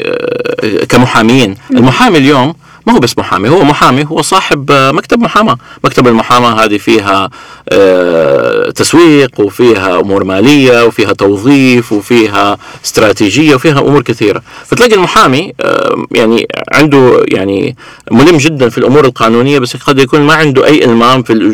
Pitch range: 110-150 Hz